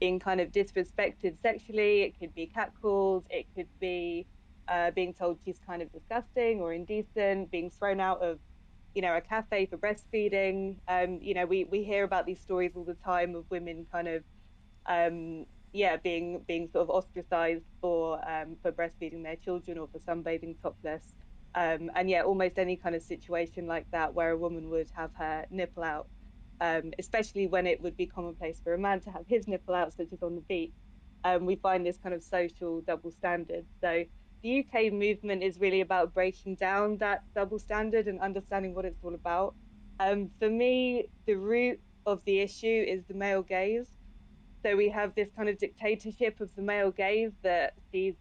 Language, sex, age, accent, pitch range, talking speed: English, female, 20-39, British, 170-200 Hz, 190 wpm